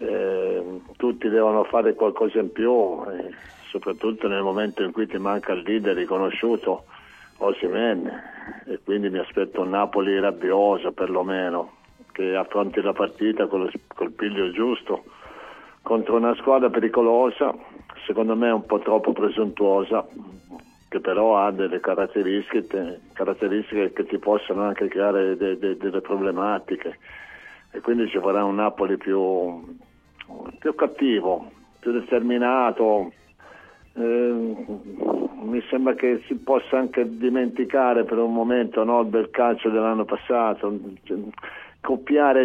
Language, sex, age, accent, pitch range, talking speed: Italian, male, 50-69, native, 100-120 Hz, 125 wpm